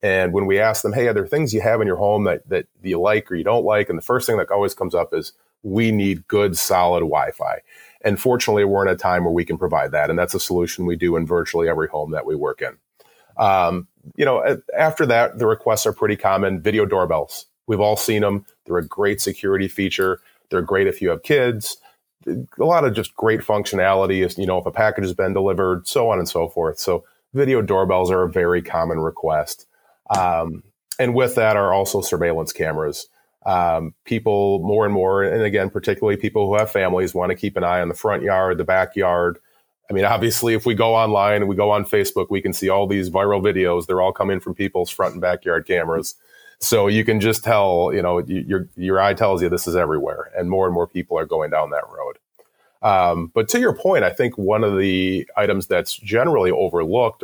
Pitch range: 90-110 Hz